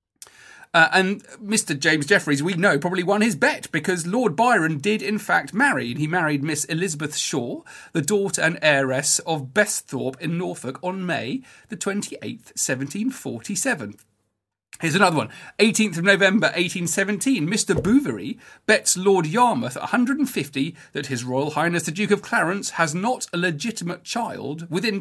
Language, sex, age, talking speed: English, male, 40-59, 150 wpm